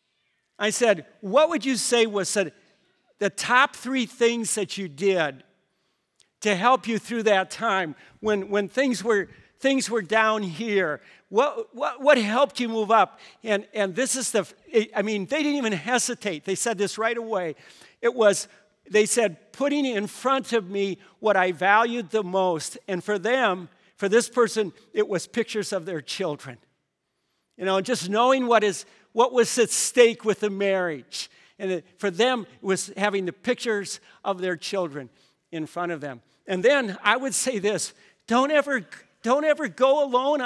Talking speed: 175 wpm